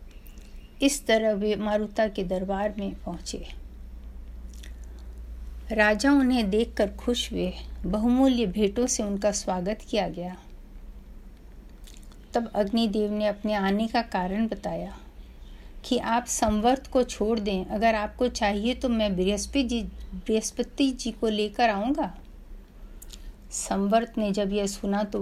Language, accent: Hindi, native